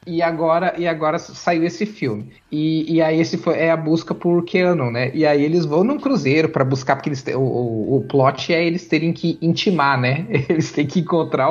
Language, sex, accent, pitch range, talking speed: Portuguese, male, Brazilian, 145-190 Hz, 225 wpm